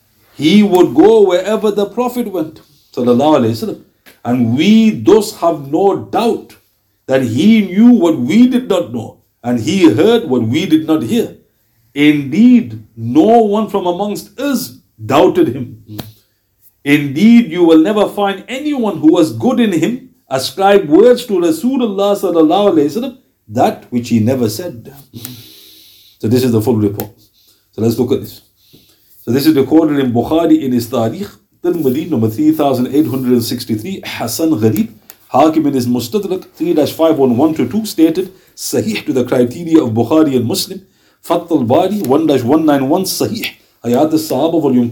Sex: male